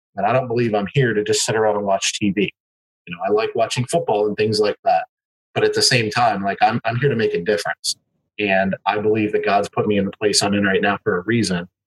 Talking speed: 270 wpm